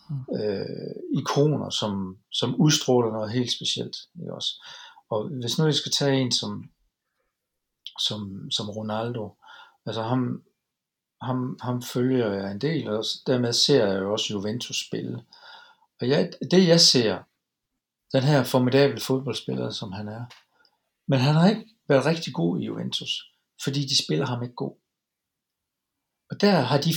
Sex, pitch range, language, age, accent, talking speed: male, 115-155 Hz, Danish, 60-79, native, 150 wpm